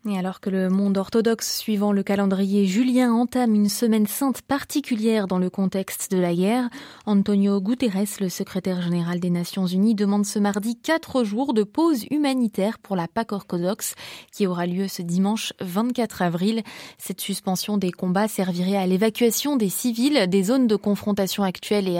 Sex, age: female, 20-39